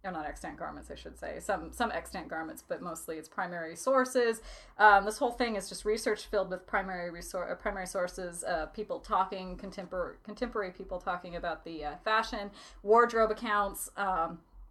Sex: female